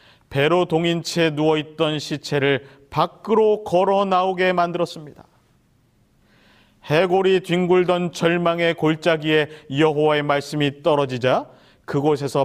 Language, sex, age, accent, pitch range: Korean, male, 40-59, native, 135-190 Hz